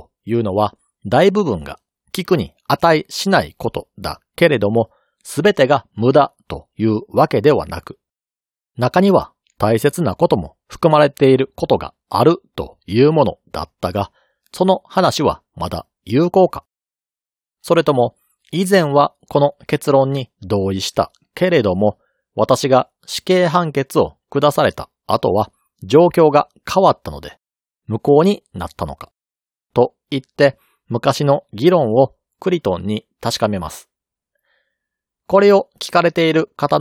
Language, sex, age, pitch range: Japanese, male, 40-59, 115-175 Hz